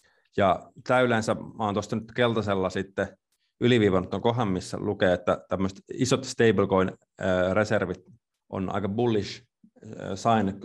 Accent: native